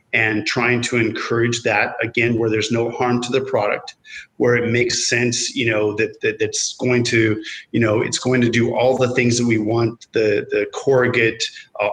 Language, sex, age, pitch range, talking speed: English, male, 40-59, 115-130 Hz, 200 wpm